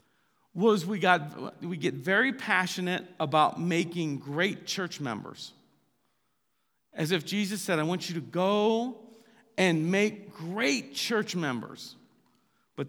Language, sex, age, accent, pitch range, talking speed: English, male, 50-69, American, 140-190 Hz, 125 wpm